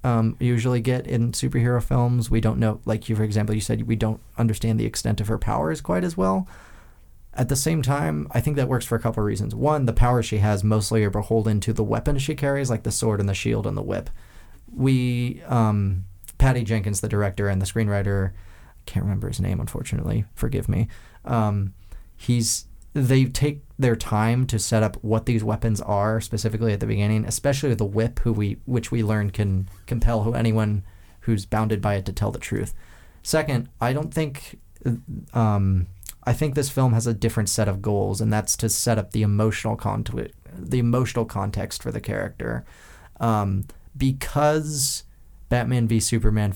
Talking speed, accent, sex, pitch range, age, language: 195 wpm, American, male, 100-120 Hz, 30-49, English